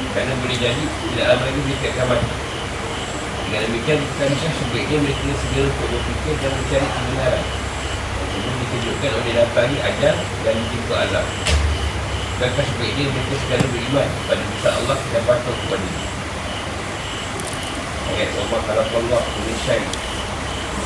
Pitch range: 95-125 Hz